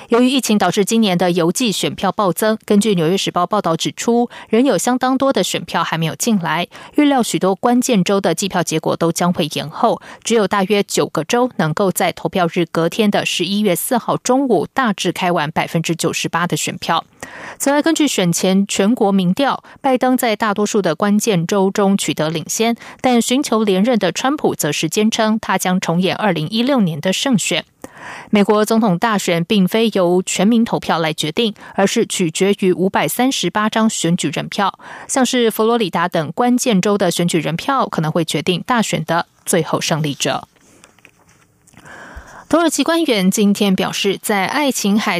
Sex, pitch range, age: female, 175-230 Hz, 20-39